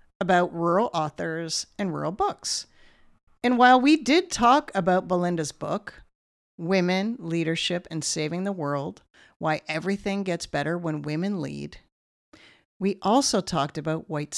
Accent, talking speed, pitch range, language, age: American, 135 wpm, 155-220 Hz, English, 50-69